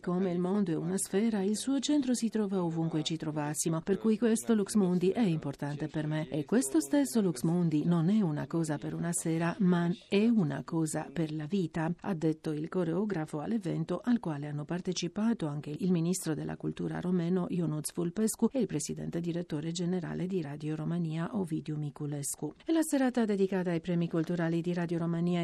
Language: Italian